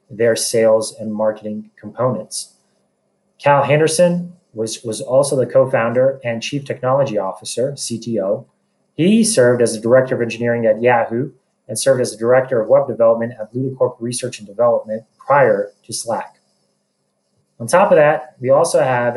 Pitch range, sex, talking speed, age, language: 115-150 Hz, male, 155 wpm, 30-49, English